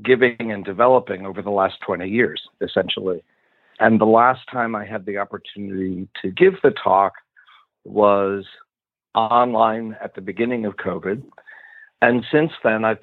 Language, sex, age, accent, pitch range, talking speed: English, male, 50-69, American, 105-125 Hz, 145 wpm